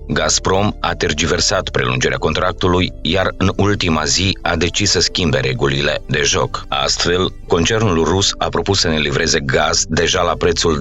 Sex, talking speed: male, 155 wpm